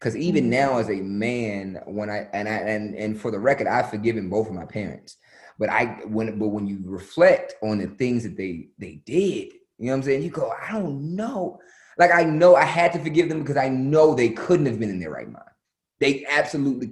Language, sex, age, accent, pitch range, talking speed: English, male, 20-39, American, 110-145 Hz, 235 wpm